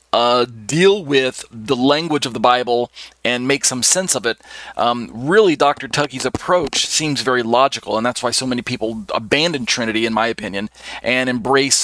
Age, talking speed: 40-59, 175 wpm